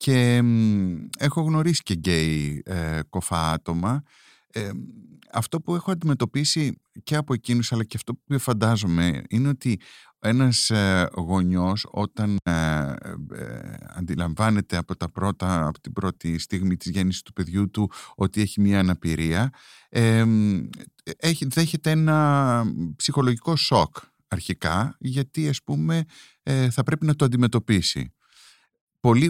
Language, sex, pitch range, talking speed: Greek, male, 90-130 Hz, 110 wpm